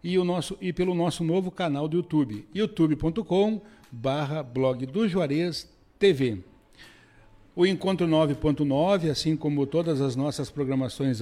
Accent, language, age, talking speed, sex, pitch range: Brazilian, Portuguese, 60-79, 110 wpm, male, 135-180 Hz